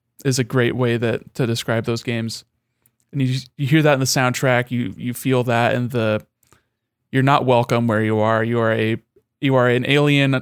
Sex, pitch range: male, 120-135 Hz